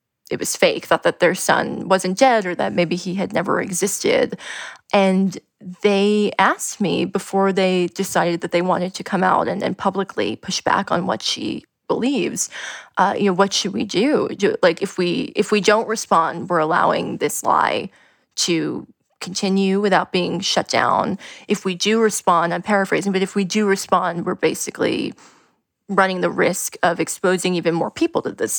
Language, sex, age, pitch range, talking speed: English, female, 20-39, 180-210 Hz, 180 wpm